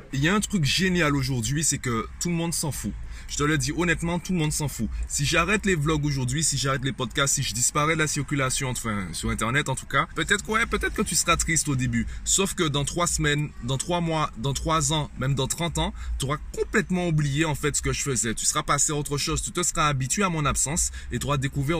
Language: French